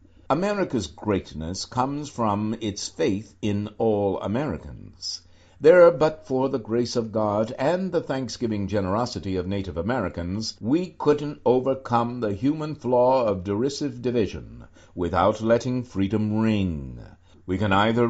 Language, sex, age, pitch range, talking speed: English, male, 60-79, 95-125 Hz, 130 wpm